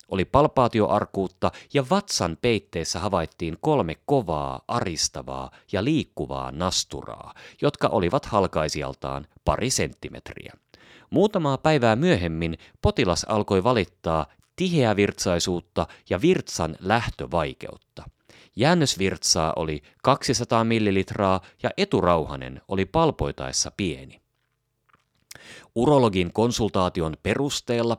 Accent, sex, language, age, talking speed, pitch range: native, male, Finnish, 30-49, 85 wpm, 80-125 Hz